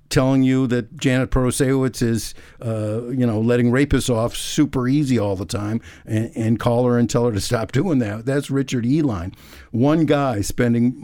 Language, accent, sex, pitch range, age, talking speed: English, American, male, 110-145 Hz, 60-79, 185 wpm